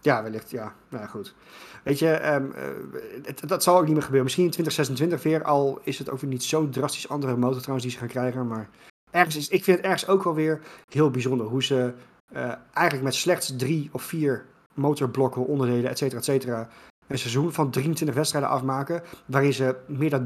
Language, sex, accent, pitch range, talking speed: Dutch, male, Dutch, 125-150 Hz, 205 wpm